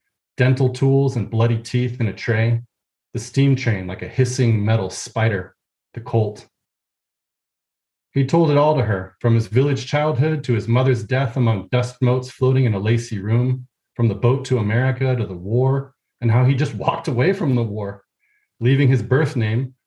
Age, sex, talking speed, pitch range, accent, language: 30-49, male, 185 wpm, 115-135 Hz, American, English